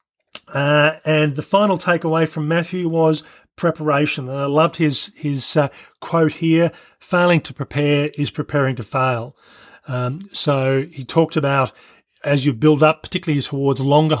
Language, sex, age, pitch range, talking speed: English, male, 40-59, 135-160 Hz, 150 wpm